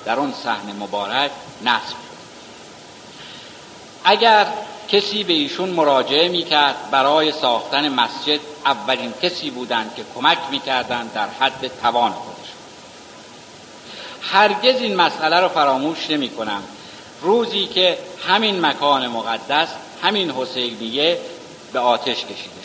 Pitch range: 120-175 Hz